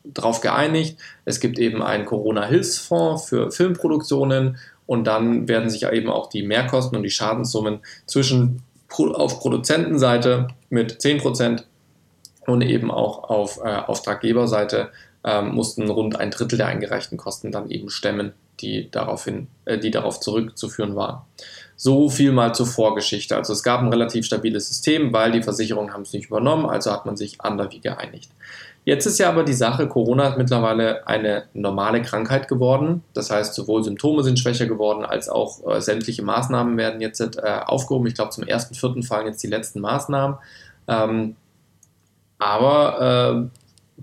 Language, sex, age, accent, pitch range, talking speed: German, male, 20-39, German, 110-130 Hz, 160 wpm